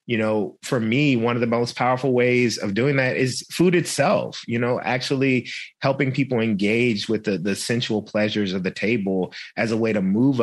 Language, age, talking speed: English, 30-49, 200 wpm